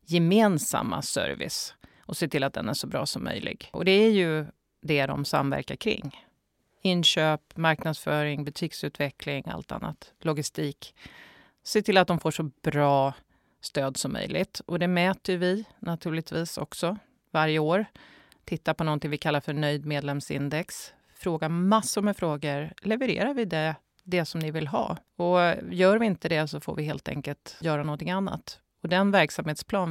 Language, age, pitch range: Swedish, 30-49, 150-190 Hz